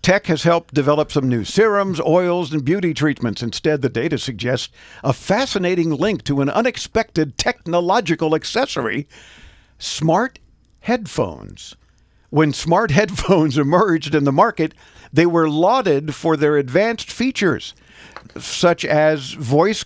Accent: American